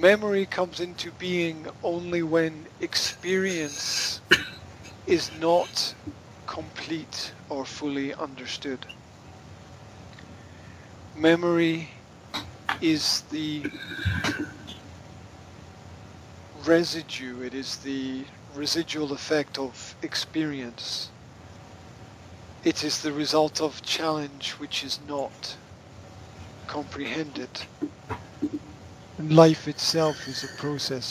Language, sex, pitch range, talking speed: English, male, 105-155 Hz, 75 wpm